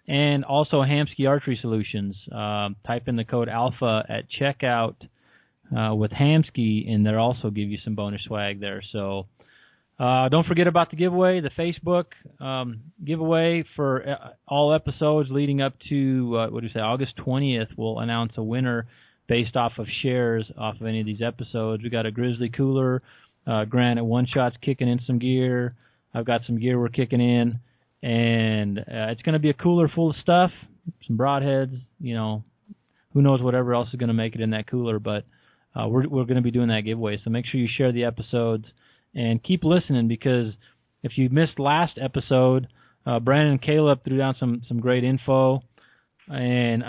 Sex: male